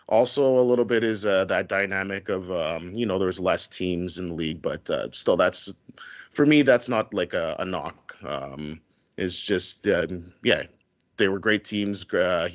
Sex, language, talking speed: male, English, 190 wpm